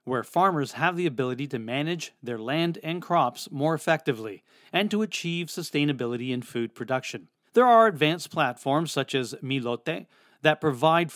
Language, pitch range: English, 130-170 Hz